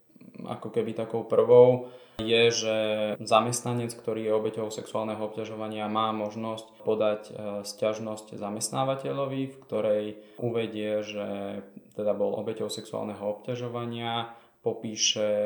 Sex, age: male, 20-39